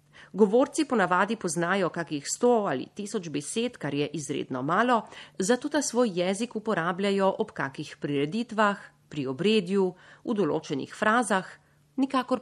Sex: female